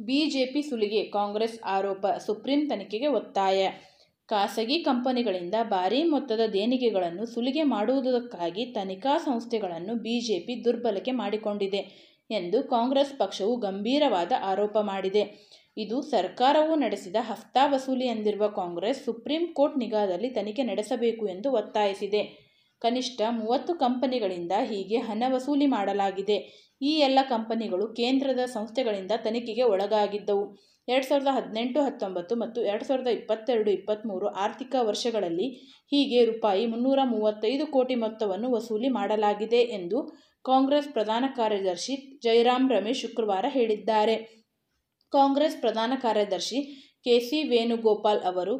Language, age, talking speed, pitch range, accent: Kannada, 20-39, 105 wpm, 210-265 Hz, native